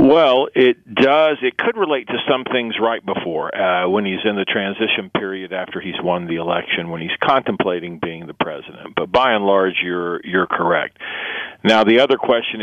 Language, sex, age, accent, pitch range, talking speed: English, male, 50-69, American, 95-115 Hz, 190 wpm